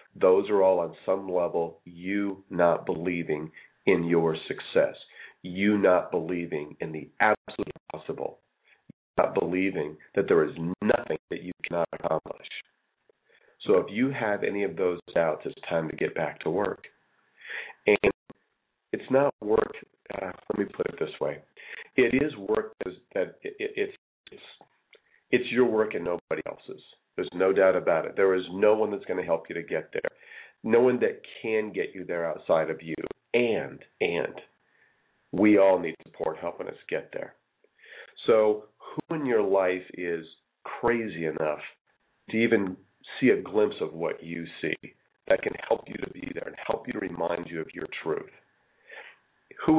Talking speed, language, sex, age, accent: 170 wpm, English, male, 40-59, American